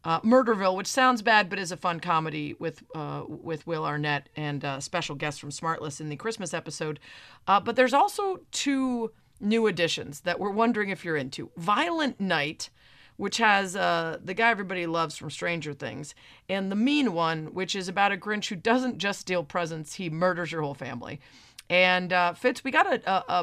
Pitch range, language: 160-220 Hz, English